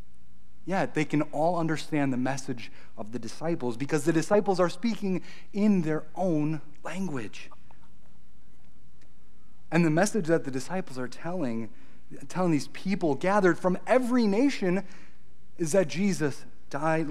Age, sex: 30-49, male